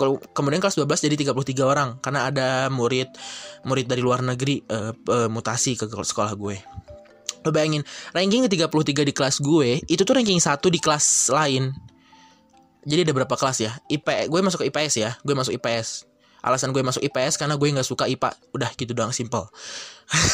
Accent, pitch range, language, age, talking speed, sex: native, 130-180 Hz, Indonesian, 20-39, 175 wpm, male